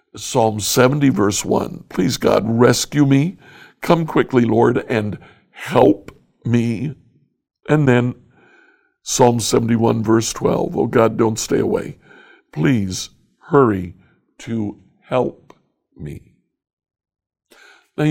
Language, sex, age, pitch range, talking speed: English, male, 60-79, 110-140 Hz, 105 wpm